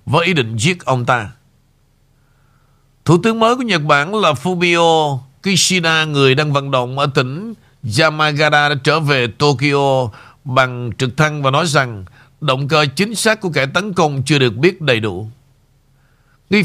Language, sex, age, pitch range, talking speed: Vietnamese, male, 50-69, 130-155 Hz, 160 wpm